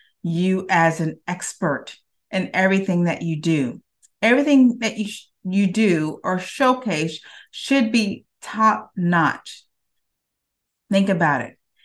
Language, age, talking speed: English, 30-49, 120 wpm